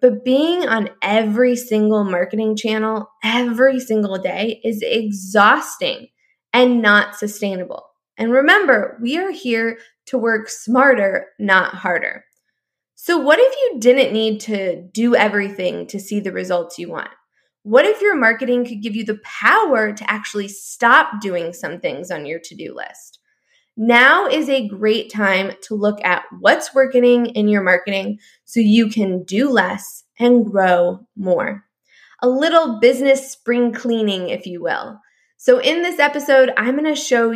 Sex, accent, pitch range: female, American, 200-255 Hz